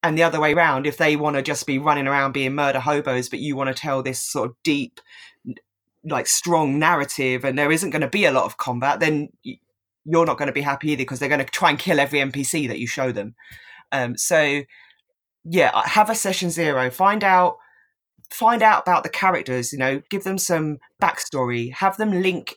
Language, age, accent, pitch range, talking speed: English, 20-39, British, 135-175 Hz, 215 wpm